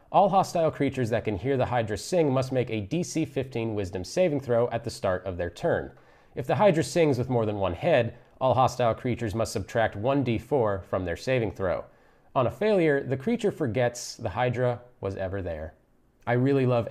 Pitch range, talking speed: 105-130 Hz, 200 wpm